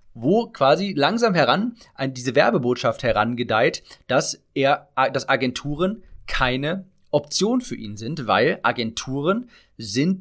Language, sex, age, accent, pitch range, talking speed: German, male, 30-49, German, 120-155 Hz, 120 wpm